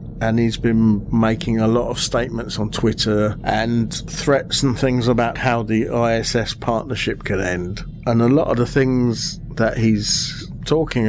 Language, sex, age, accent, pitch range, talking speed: English, male, 50-69, British, 105-135 Hz, 160 wpm